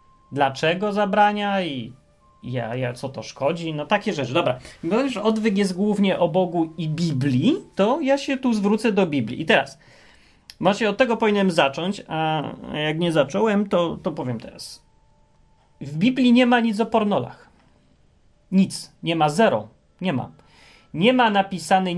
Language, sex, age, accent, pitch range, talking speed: Polish, male, 30-49, native, 135-195 Hz, 160 wpm